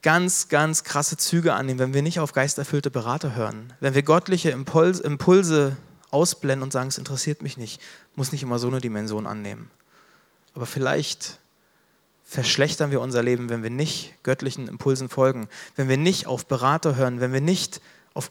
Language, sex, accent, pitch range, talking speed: German, male, German, 135-170 Hz, 170 wpm